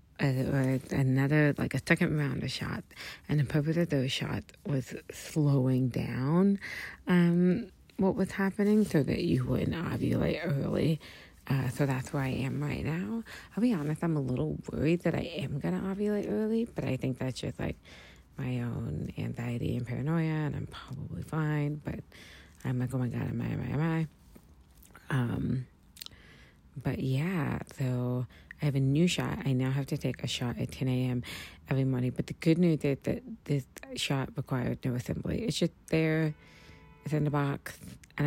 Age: 30-49